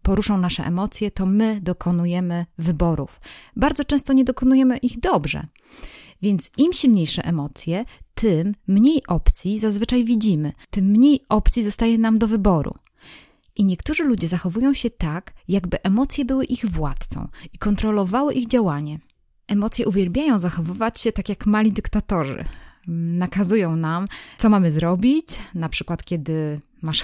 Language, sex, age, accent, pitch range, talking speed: Polish, female, 20-39, native, 170-225 Hz, 135 wpm